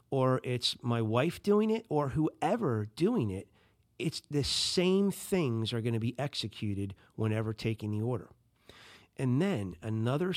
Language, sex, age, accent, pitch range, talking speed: English, male, 50-69, American, 105-140 Hz, 150 wpm